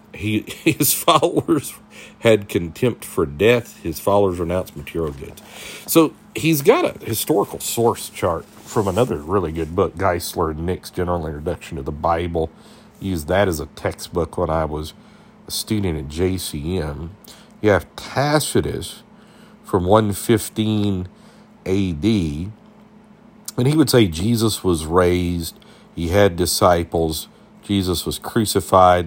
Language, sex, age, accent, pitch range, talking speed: English, male, 50-69, American, 85-125 Hz, 130 wpm